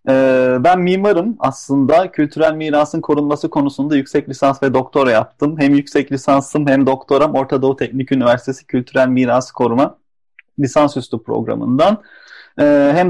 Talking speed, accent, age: 125 wpm, native, 30-49